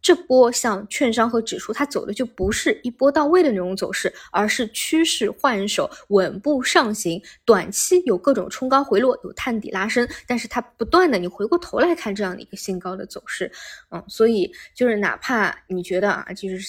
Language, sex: Chinese, female